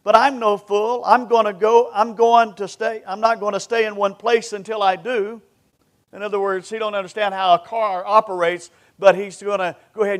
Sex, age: male, 50-69